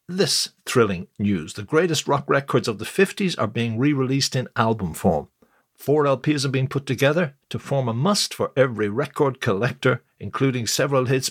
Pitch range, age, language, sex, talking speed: 110-140 Hz, 60-79, English, male, 175 wpm